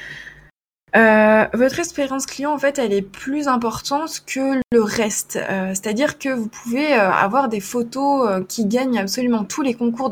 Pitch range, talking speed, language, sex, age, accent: 195-255 Hz, 170 wpm, French, female, 20-39, French